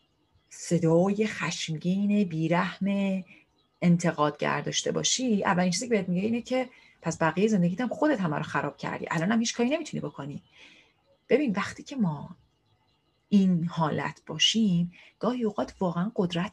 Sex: female